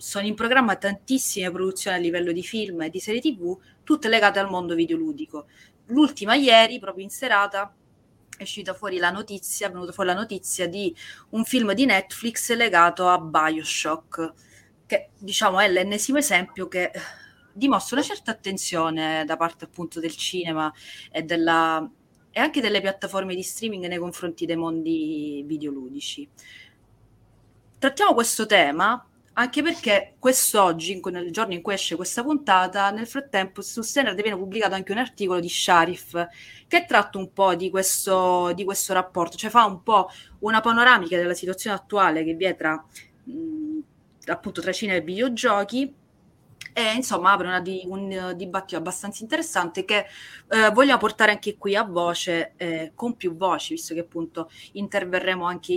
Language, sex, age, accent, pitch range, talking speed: Italian, female, 30-49, native, 170-225 Hz, 155 wpm